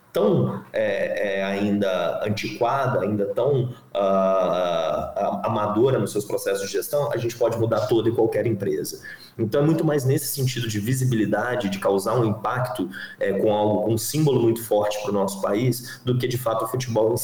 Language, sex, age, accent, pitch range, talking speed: Portuguese, male, 30-49, Brazilian, 100-130 Hz, 165 wpm